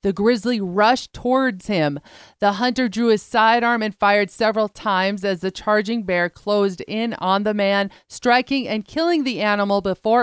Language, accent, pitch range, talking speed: English, American, 200-235 Hz, 170 wpm